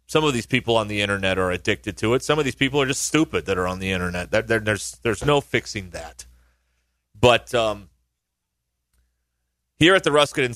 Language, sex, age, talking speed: English, male, 30-49, 200 wpm